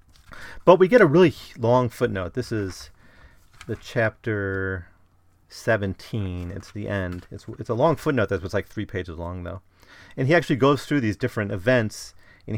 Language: English